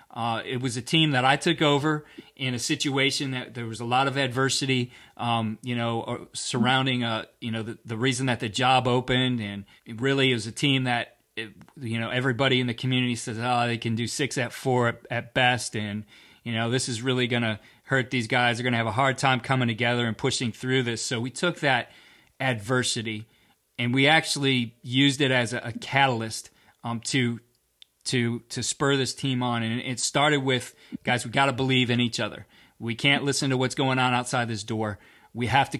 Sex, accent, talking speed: male, American, 215 wpm